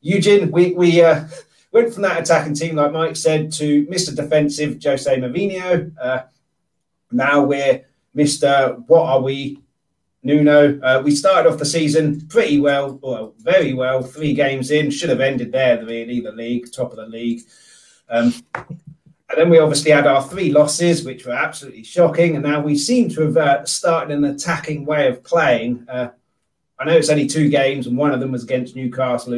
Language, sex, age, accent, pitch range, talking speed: English, male, 30-49, British, 125-160 Hz, 185 wpm